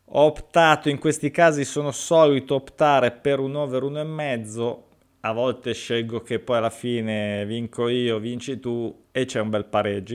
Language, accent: Italian, native